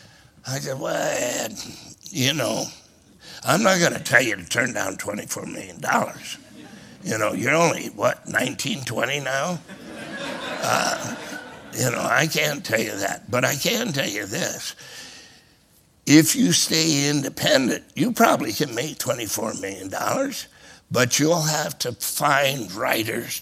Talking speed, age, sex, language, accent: 140 wpm, 60-79, male, English, American